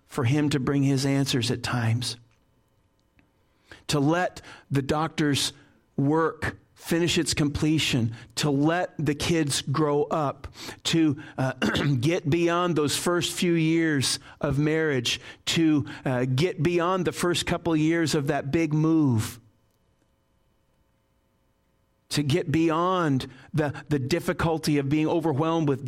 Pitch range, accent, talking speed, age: 130-170 Hz, American, 125 wpm, 50-69